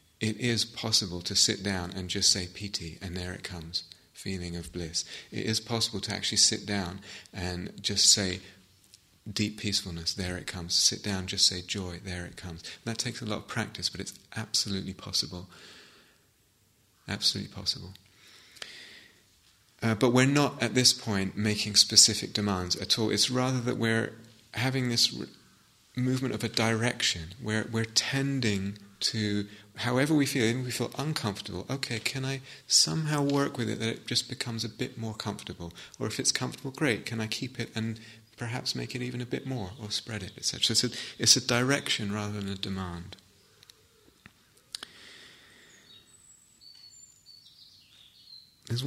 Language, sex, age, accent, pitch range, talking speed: English, male, 30-49, British, 95-120 Hz, 165 wpm